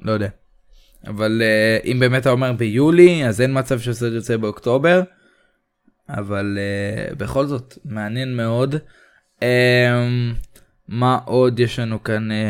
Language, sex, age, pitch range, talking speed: Hebrew, male, 20-39, 110-130 Hz, 135 wpm